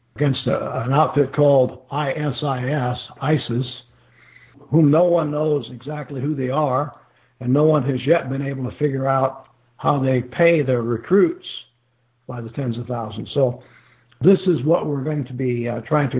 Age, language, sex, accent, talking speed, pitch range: 60-79, English, male, American, 170 wpm, 120-145 Hz